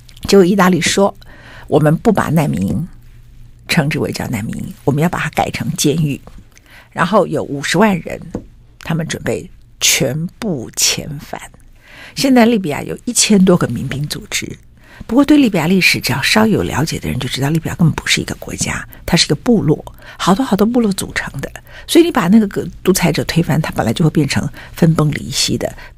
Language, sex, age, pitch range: Chinese, female, 50-69, 140-195 Hz